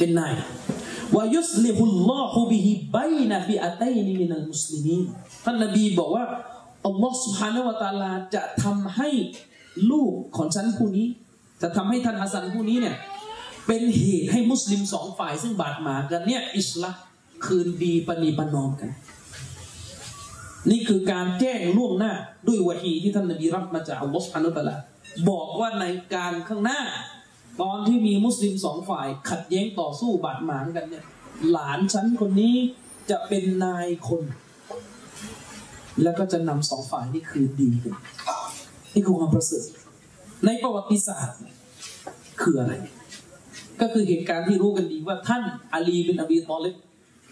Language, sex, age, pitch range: Thai, male, 30-49, 165-220 Hz